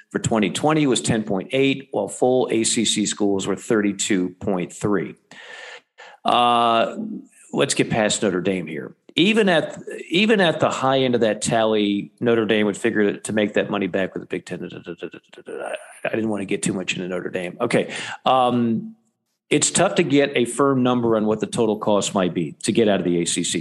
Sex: male